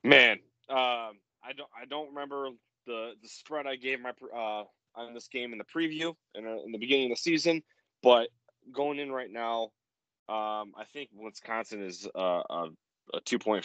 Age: 20-39